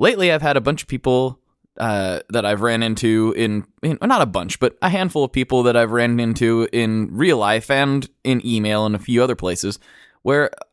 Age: 20-39